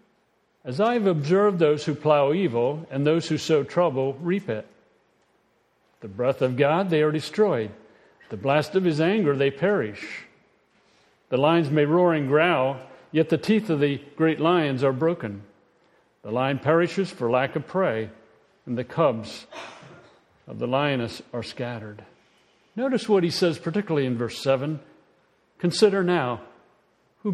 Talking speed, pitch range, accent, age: 155 wpm, 125-165 Hz, American, 60-79